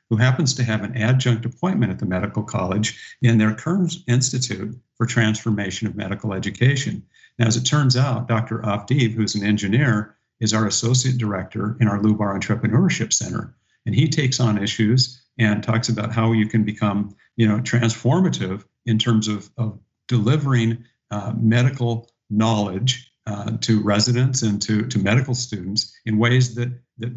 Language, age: English, 50-69